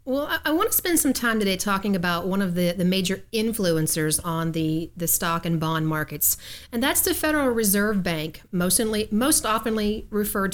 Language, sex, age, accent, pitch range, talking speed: English, female, 40-59, American, 175-240 Hz, 190 wpm